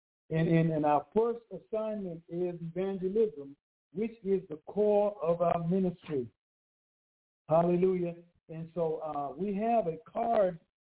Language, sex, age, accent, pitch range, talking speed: English, male, 60-79, American, 150-195 Hz, 130 wpm